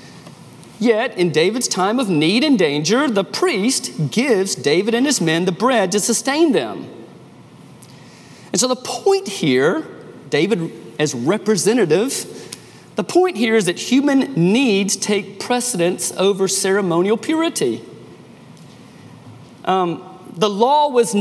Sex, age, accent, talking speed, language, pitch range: male, 40-59, American, 125 wpm, English, 190-270 Hz